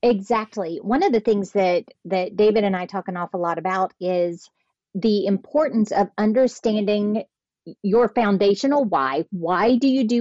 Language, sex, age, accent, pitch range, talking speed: English, female, 40-59, American, 200-265 Hz, 160 wpm